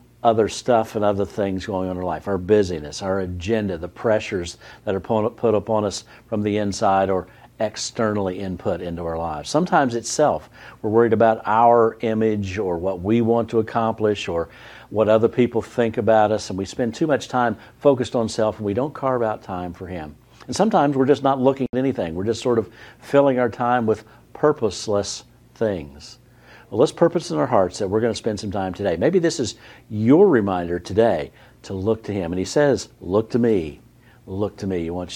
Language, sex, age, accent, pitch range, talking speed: English, male, 60-79, American, 95-115 Hz, 205 wpm